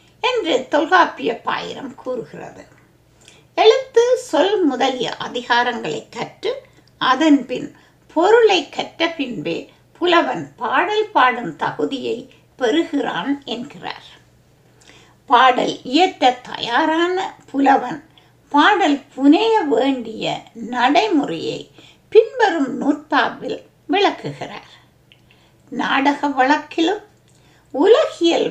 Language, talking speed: Tamil, 70 wpm